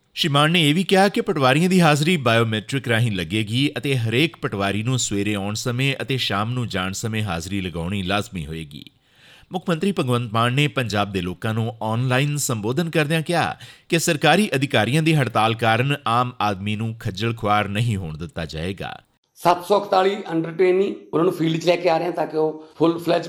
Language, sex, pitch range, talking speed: Punjabi, male, 115-170 Hz, 165 wpm